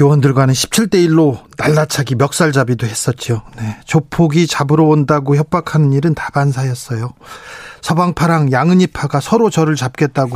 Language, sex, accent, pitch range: Korean, male, native, 125-165 Hz